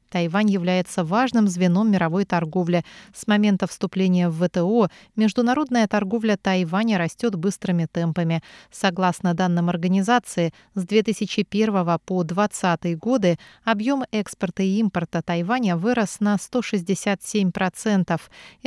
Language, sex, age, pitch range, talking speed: Russian, female, 30-49, 175-215 Hz, 105 wpm